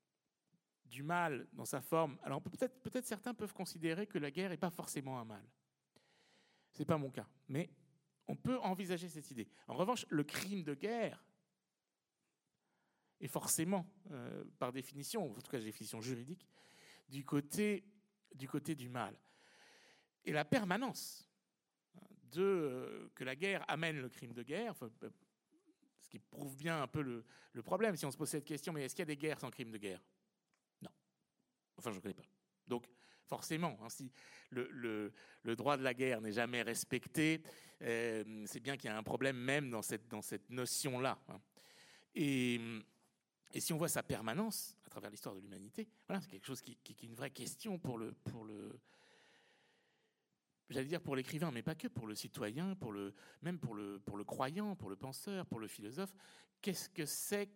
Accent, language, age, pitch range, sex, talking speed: French, French, 60-79, 120-180 Hz, male, 190 wpm